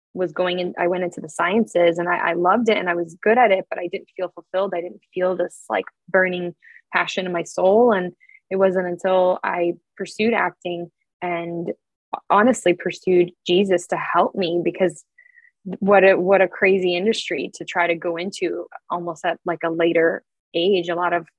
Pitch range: 175-205 Hz